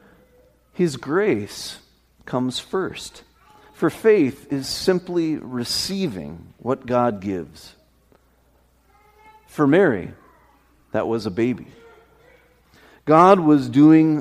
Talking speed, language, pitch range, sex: 90 wpm, English, 115-175 Hz, male